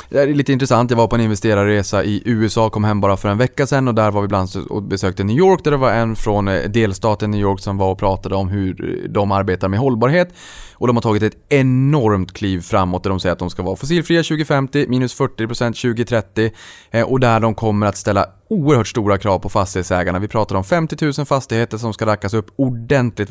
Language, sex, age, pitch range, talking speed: Swedish, male, 20-39, 100-120 Hz, 220 wpm